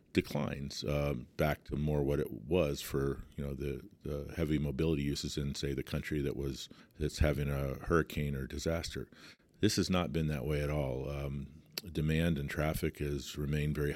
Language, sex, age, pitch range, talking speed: English, male, 50-69, 70-80 Hz, 185 wpm